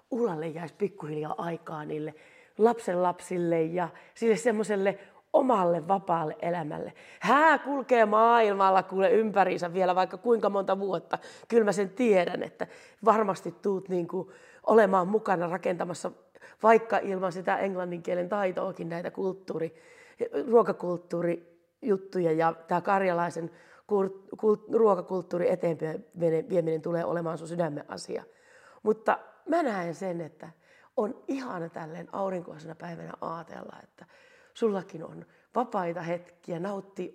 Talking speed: 105 wpm